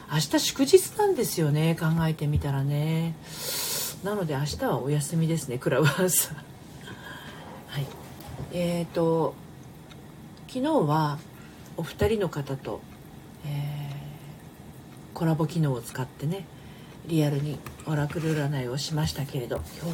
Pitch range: 150-185 Hz